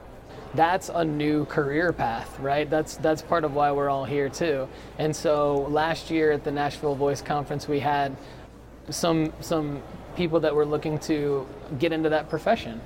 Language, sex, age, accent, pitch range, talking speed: English, male, 20-39, American, 140-160 Hz, 175 wpm